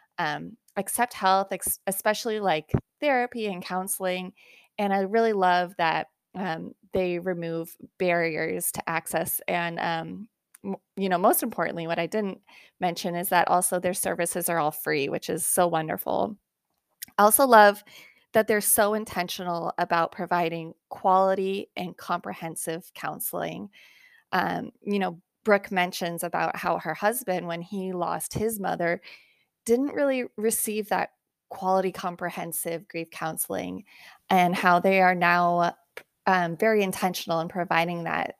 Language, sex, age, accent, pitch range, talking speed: English, female, 20-39, American, 175-210 Hz, 135 wpm